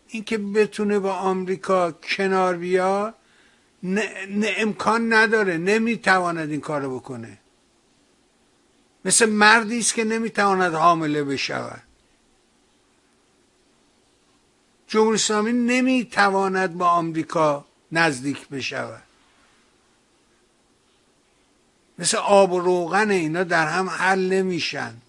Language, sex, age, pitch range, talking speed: Persian, male, 60-79, 155-195 Hz, 85 wpm